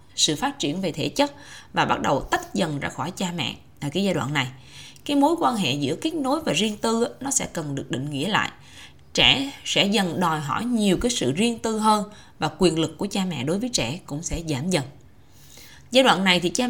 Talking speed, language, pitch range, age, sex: 235 wpm, Vietnamese, 145-245 Hz, 20-39, female